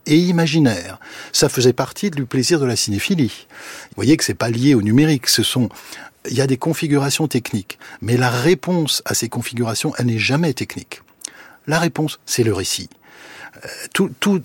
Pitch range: 110-155 Hz